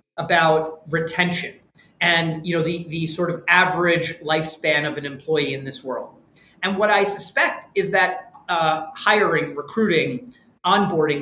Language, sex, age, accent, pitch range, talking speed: English, male, 30-49, American, 160-195 Hz, 145 wpm